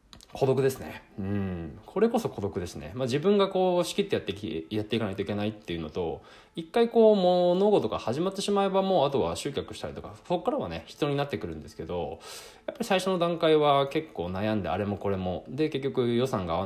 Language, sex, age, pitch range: Japanese, male, 20-39, 100-170 Hz